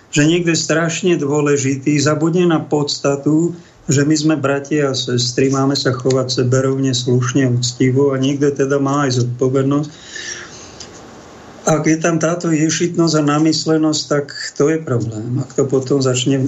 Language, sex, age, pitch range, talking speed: Slovak, male, 50-69, 130-150 Hz, 145 wpm